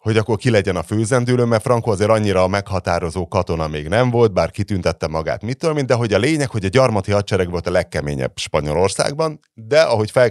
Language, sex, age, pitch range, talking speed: Hungarian, male, 30-49, 85-125 Hz, 205 wpm